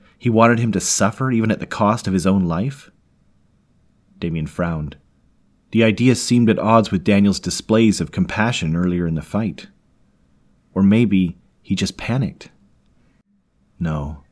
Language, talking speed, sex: English, 145 wpm, male